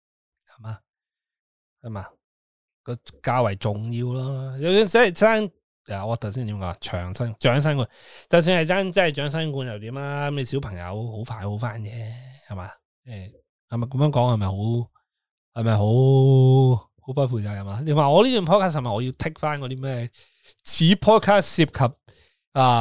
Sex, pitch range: male, 105-150 Hz